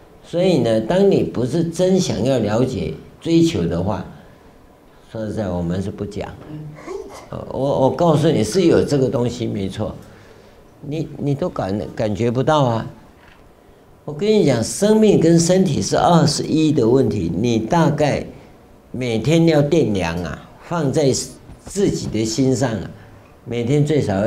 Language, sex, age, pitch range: Chinese, male, 60-79, 100-145 Hz